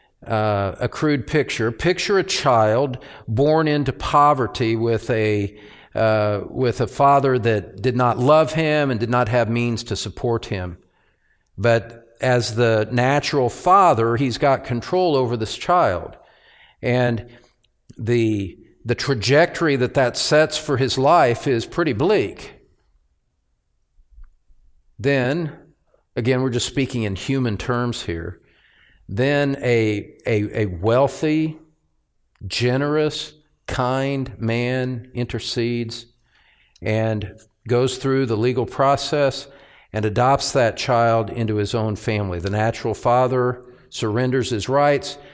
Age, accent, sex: 50-69, American, male